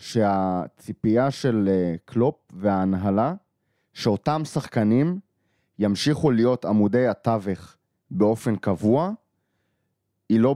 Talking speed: 80 wpm